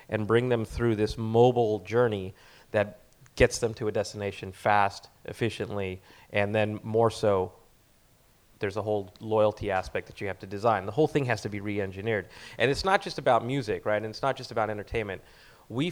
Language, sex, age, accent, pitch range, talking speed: English, male, 30-49, American, 105-120 Hz, 190 wpm